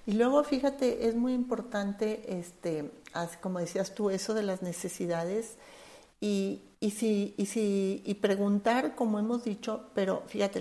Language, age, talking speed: English, 50-69, 155 wpm